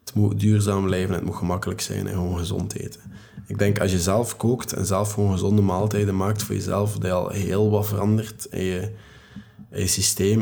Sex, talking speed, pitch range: male, 215 wpm, 100-110 Hz